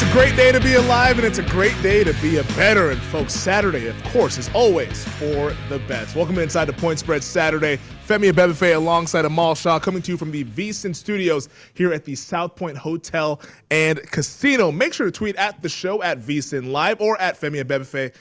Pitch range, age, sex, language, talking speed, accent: 145-185 Hz, 20-39, male, English, 220 wpm, American